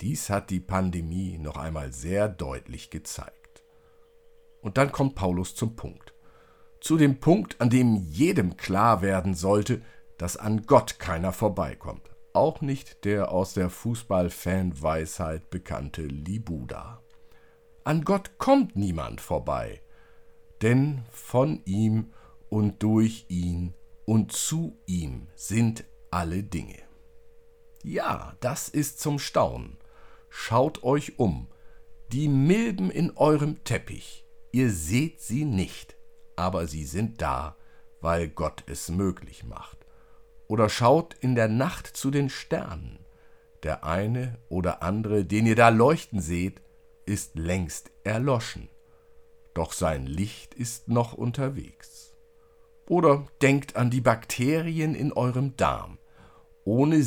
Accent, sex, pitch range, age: German, male, 90-140 Hz, 50-69